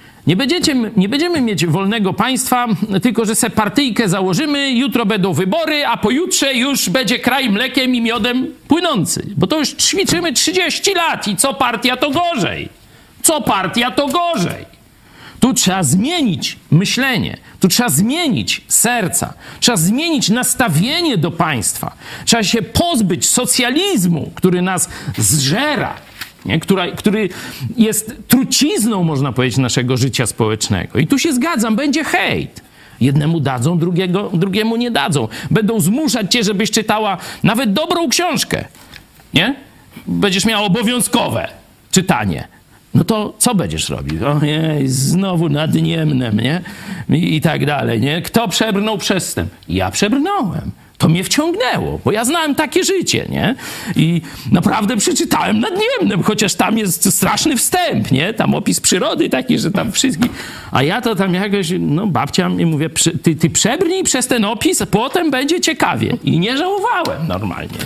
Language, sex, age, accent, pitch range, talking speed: Polish, male, 50-69, native, 170-265 Hz, 145 wpm